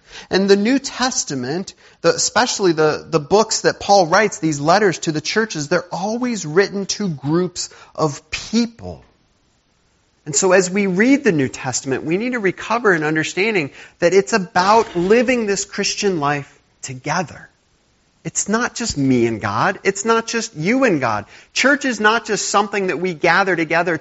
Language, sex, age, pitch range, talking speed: English, male, 40-59, 125-195 Hz, 175 wpm